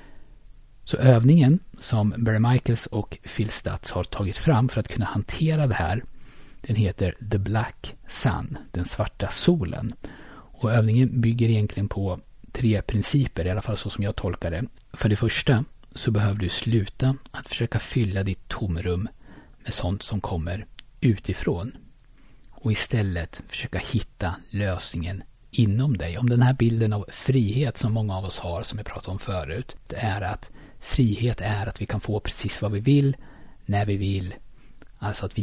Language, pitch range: Swedish, 100-125 Hz